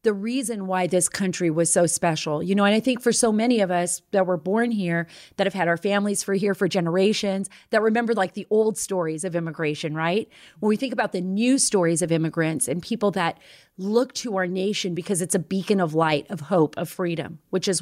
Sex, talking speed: female, 230 wpm